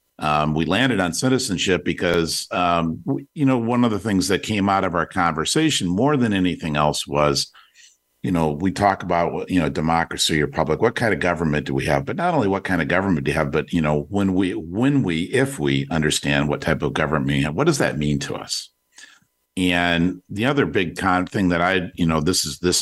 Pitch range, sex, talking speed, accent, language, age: 75-90 Hz, male, 230 wpm, American, English, 50-69